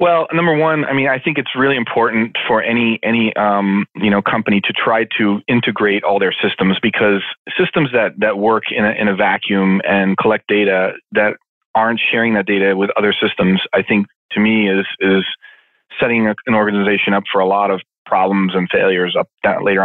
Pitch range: 100-110 Hz